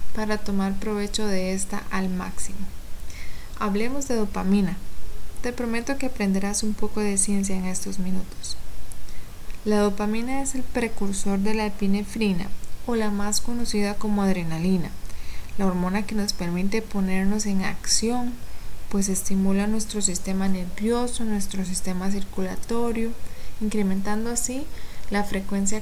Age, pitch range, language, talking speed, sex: 20-39, 190-220 Hz, Spanish, 130 wpm, female